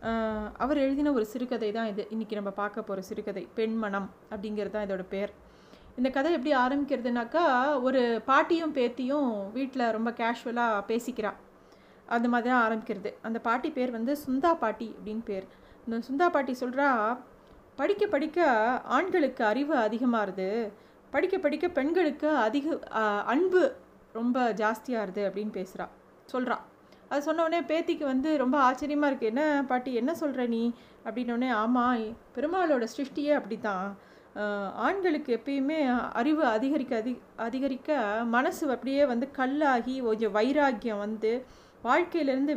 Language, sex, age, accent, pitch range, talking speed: Tamil, female, 30-49, native, 220-280 Hz, 130 wpm